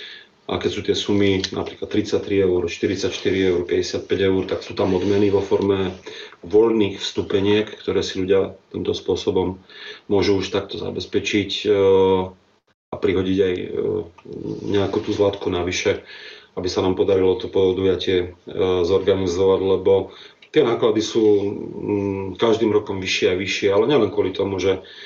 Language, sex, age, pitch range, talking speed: Slovak, male, 30-49, 95-105 Hz, 135 wpm